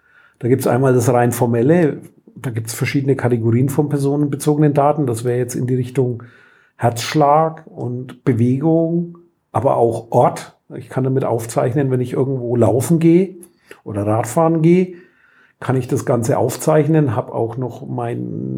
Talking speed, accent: 160 wpm, German